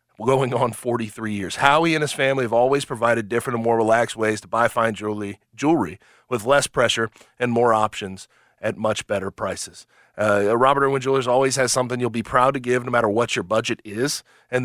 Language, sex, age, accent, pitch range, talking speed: English, male, 30-49, American, 110-140 Hz, 205 wpm